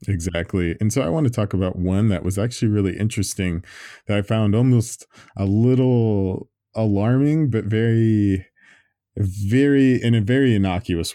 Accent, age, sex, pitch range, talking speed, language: American, 20-39, male, 90-110 Hz, 150 wpm, English